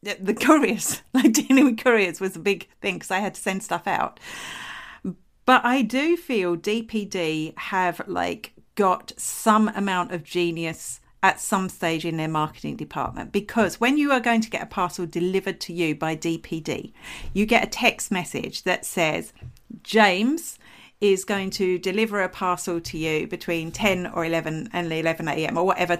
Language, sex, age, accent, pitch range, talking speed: English, female, 50-69, British, 175-225 Hz, 175 wpm